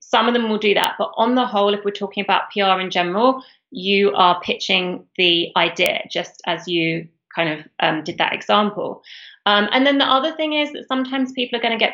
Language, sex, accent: English, female, British